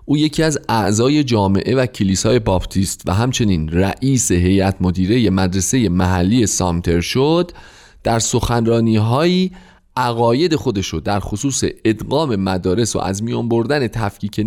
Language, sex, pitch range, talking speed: Persian, male, 95-130 Hz, 130 wpm